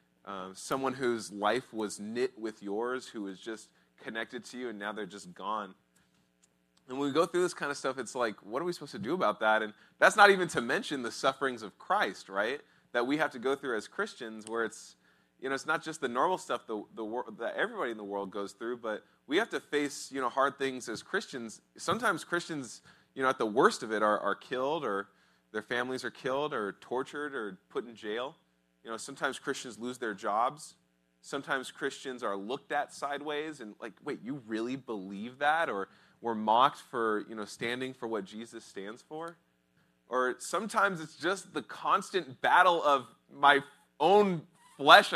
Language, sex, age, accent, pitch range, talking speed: English, male, 20-39, American, 105-160 Hz, 205 wpm